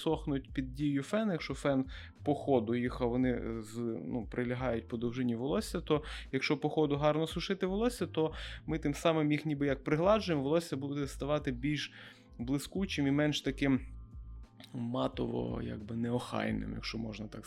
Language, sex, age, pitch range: Ukrainian, male, 20-39, 125-150 Hz